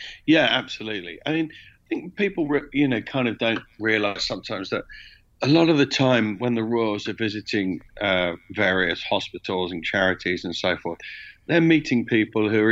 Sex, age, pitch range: male, 50-69, 100-120 Hz